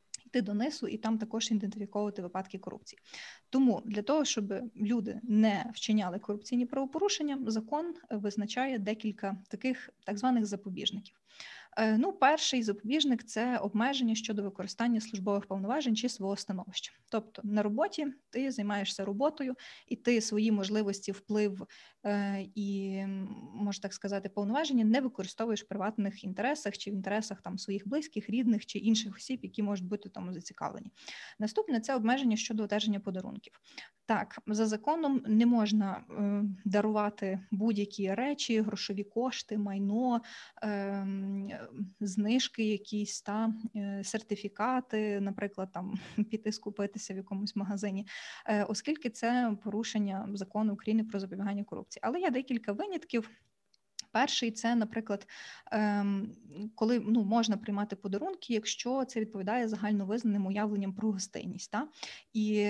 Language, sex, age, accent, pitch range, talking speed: Ukrainian, female, 20-39, native, 200-230 Hz, 130 wpm